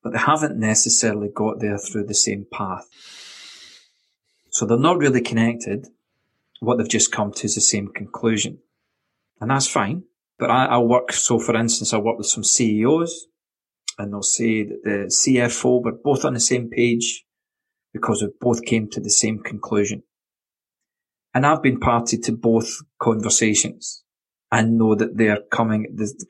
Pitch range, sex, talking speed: 105-120 Hz, male, 160 wpm